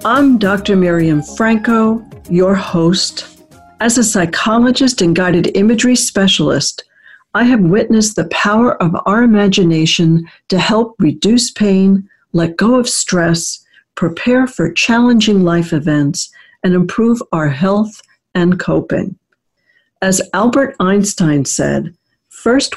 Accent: American